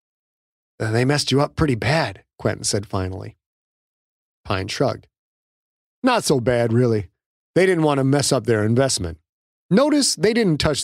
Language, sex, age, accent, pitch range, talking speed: English, male, 40-59, American, 110-150 Hz, 150 wpm